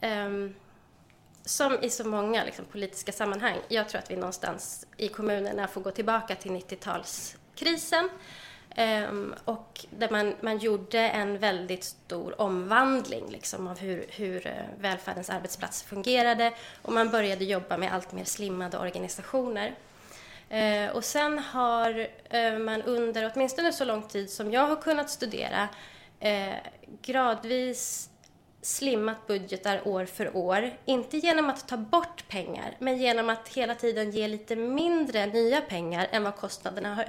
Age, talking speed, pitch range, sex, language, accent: 20-39, 135 wpm, 200-255 Hz, female, English, Swedish